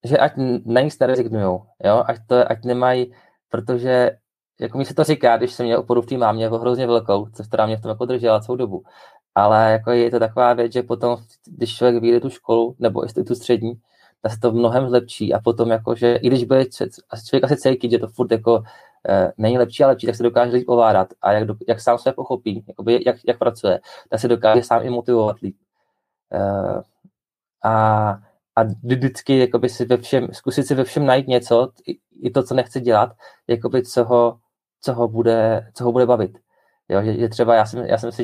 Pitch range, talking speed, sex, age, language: 110-125 Hz, 205 wpm, male, 20-39, Czech